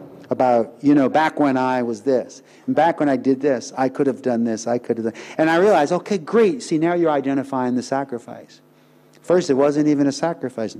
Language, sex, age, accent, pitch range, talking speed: English, male, 50-69, American, 125-155 Hz, 220 wpm